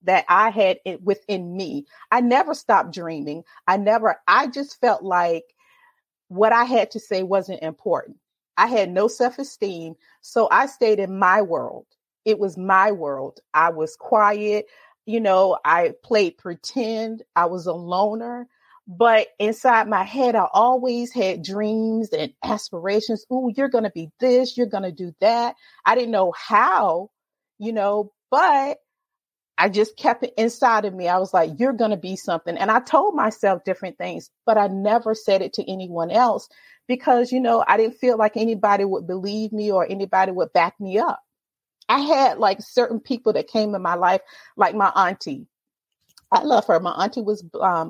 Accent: American